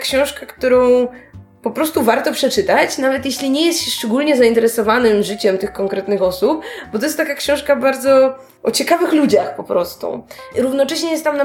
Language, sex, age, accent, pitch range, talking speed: Polish, female, 20-39, native, 205-255 Hz, 165 wpm